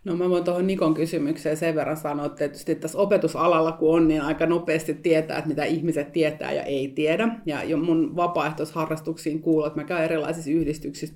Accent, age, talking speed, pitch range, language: native, 30-49, 195 wpm, 155-180 Hz, Finnish